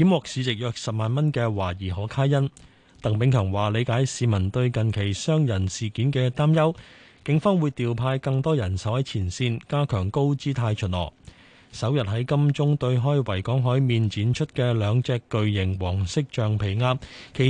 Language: Chinese